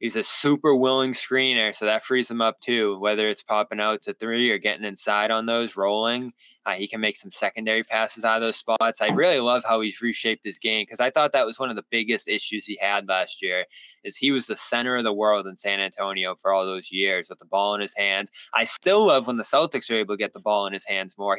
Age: 20-39